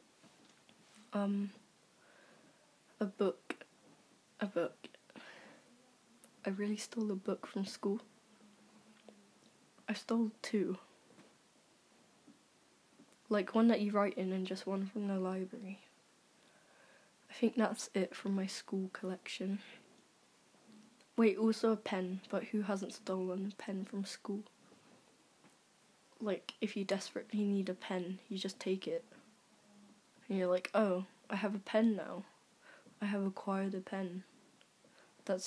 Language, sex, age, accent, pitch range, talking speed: English, female, 10-29, British, 190-220 Hz, 125 wpm